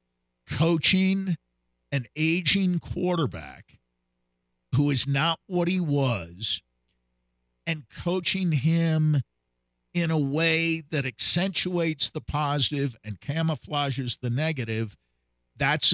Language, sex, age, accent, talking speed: English, male, 50-69, American, 95 wpm